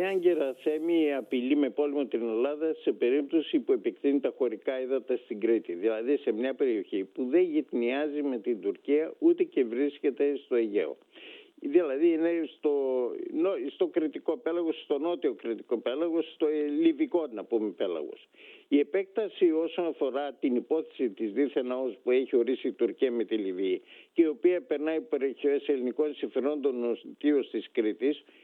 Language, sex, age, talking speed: Greek, male, 60-79, 150 wpm